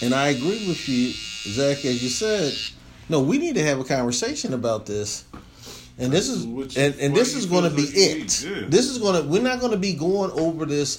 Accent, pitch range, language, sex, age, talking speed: American, 115-150 Hz, English, male, 40-59, 210 wpm